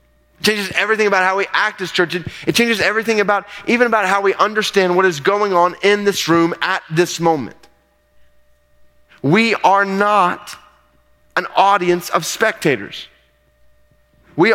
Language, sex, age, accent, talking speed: English, male, 30-49, American, 150 wpm